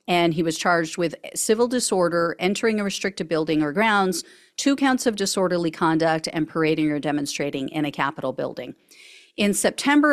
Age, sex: 40-59, female